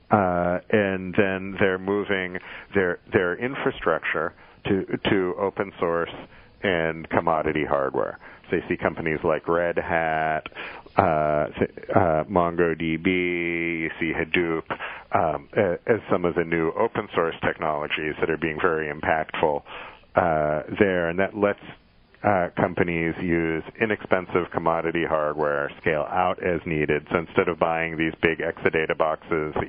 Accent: American